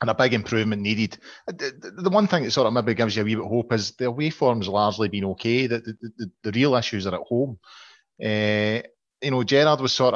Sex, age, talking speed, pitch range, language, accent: male, 30-49, 235 wpm, 105-125 Hz, English, British